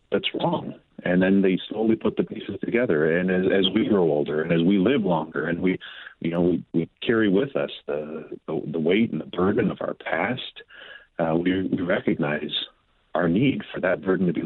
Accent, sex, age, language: American, male, 40-59, English